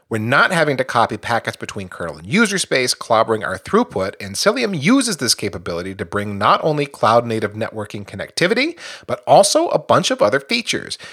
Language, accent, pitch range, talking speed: English, American, 110-165 Hz, 180 wpm